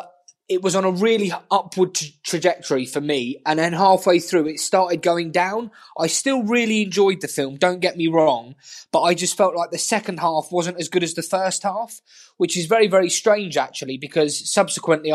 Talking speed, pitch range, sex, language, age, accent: 200 wpm, 155-195 Hz, male, English, 20-39, British